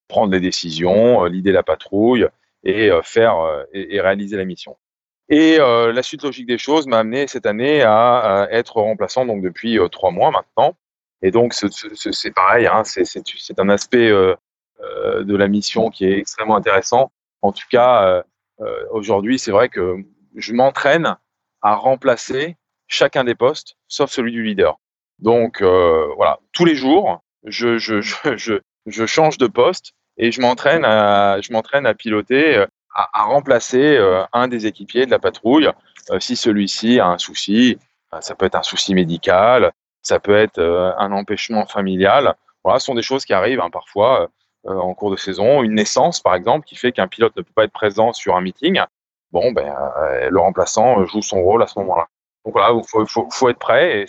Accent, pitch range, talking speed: French, 100-140 Hz, 190 wpm